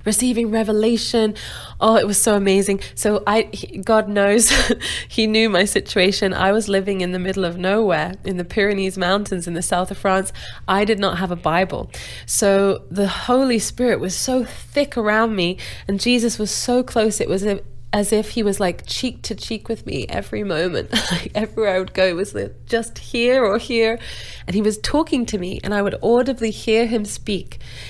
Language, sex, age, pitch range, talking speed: English, female, 20-39, 180-220 Hz, 195 wpm